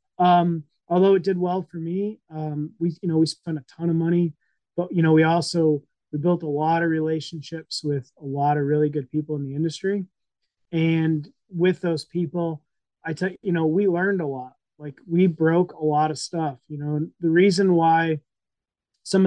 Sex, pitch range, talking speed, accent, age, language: male, 150-175 Hz, 200 wpm, American, 30-49, English